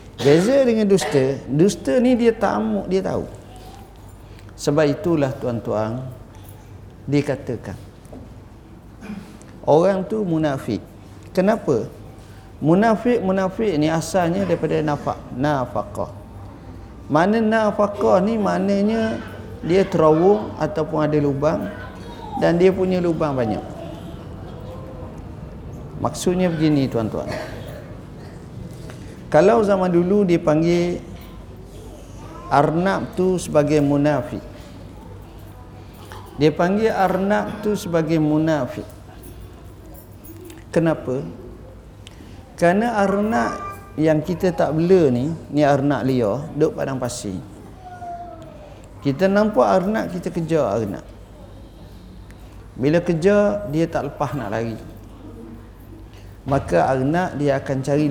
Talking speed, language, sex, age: 90 wpm, Malay, male, 50-69